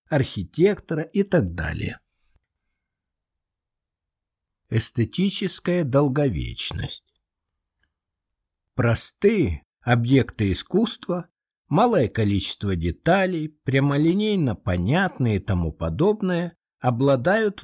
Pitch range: 105-170 Hz